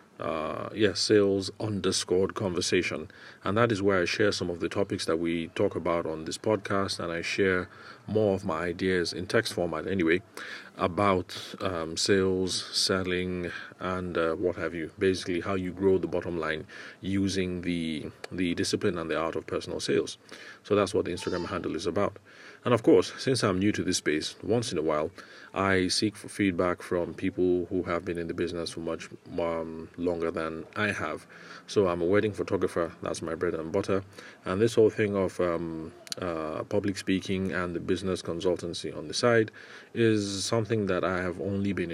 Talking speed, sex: 190 wpm, male